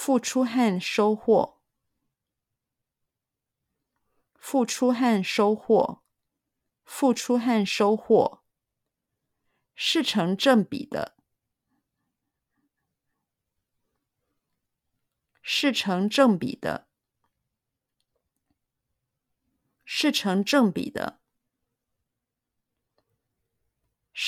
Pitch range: 180-250 Hz